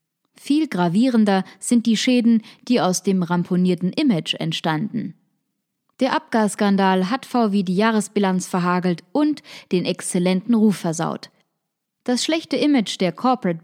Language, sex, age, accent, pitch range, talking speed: German, female, 20-39, German, 180-225 Hz, 125 wpm